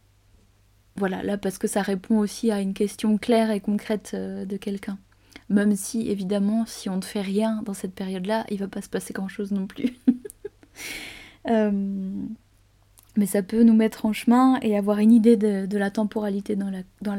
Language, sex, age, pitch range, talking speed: French, female, 20-39, 190-215 Hz, 190 wpm